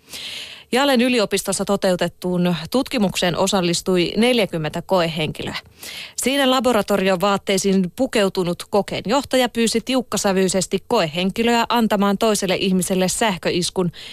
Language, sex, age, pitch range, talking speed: Finnish, female, 30-49, 180-235 Hz, 85 wpm